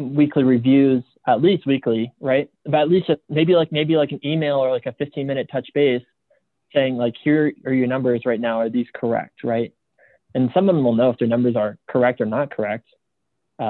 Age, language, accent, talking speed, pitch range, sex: 20-39, English, American, 210 wpm, 115-140 Hz, male